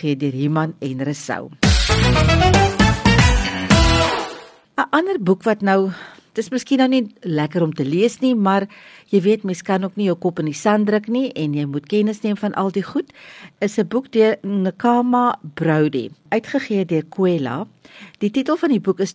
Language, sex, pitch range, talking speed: English, female, 160-210 Hz, 175 wpm